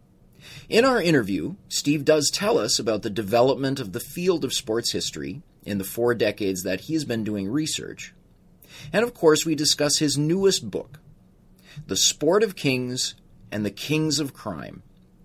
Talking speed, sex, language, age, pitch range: 170 wpm, male, English, 30-49, 105-155 Hz